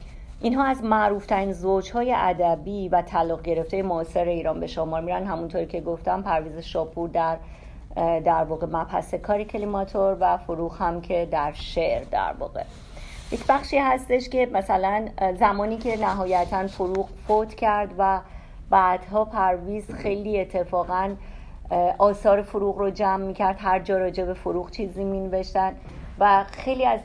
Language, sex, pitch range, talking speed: Persian, female, 175-200 Hz, 140 wpm